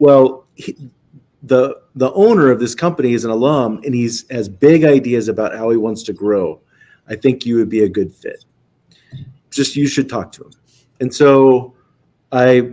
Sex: male